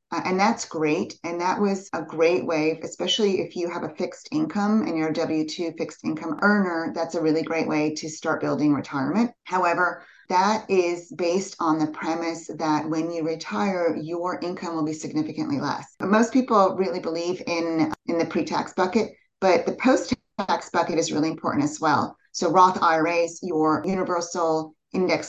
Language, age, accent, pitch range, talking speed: English, 30-49, American, 155-185 Hz, 180 wpm